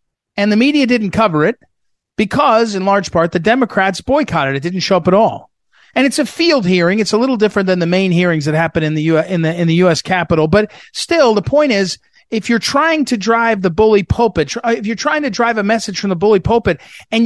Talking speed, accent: 240 wpm, American